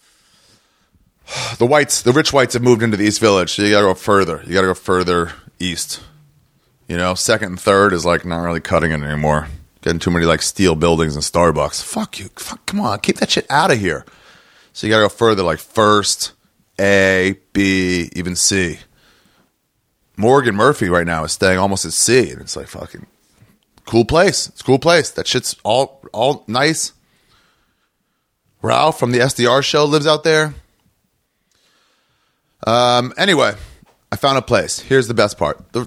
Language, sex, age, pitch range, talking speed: English, male, 30-49, 90-125 Hz, 180 wpm